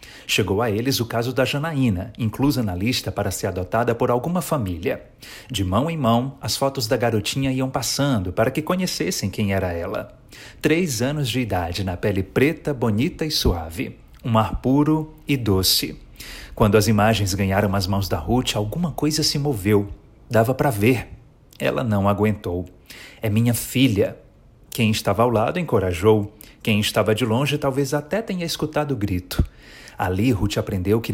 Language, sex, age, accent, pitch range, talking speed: Portuguese, male, 40-59, Brazilian, 100-135 Hz, 170 wpm